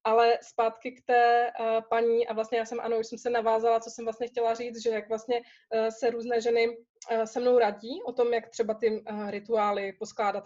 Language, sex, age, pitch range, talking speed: Slovak, female, 20-39, 220-245 Hz, 200 wpm